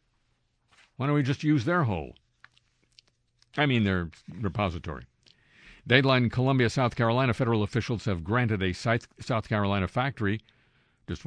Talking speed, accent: 130 wpm, American